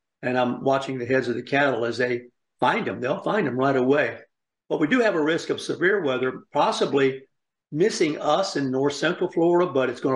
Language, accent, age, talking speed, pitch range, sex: English, American, 50-69, 205 wpm, 130-150 Hz, male